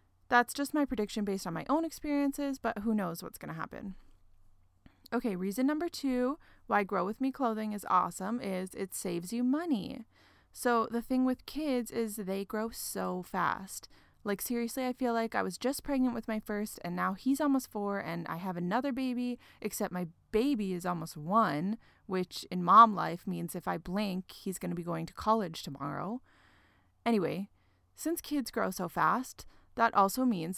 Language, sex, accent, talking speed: English, female, American, 185 wpm